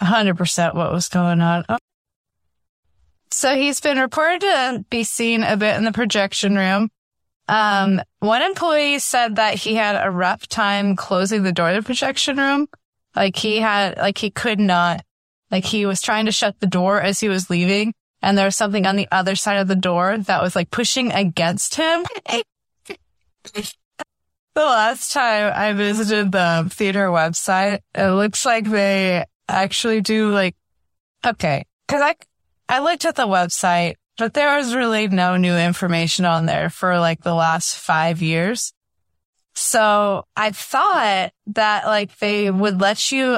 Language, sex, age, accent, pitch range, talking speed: English, female, 20-39, American, 185-230 Hz, 165 wpm